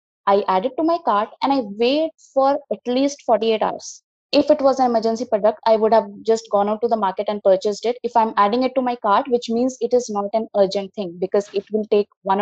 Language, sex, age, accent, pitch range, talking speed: Telugu, female, 20-39, native, 200-245 Hz, 250 wpm